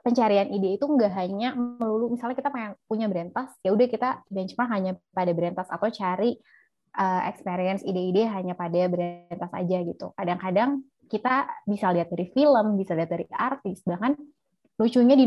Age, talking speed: 20-39, 165 wpm